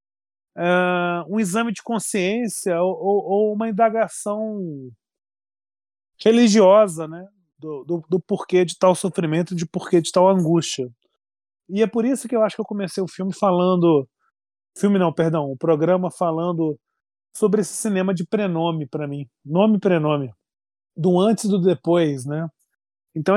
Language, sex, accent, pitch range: Portuguese, male, Brazilian, 165-215 Hz